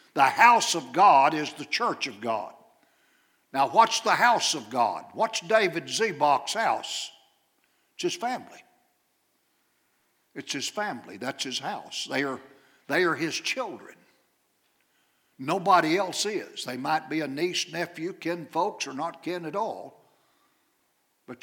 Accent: American